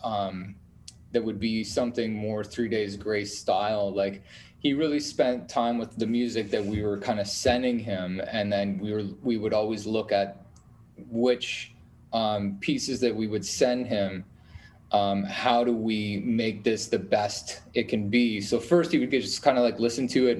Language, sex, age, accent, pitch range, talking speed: English, male, 20-39, American, 100-120 Hz, 190 wpm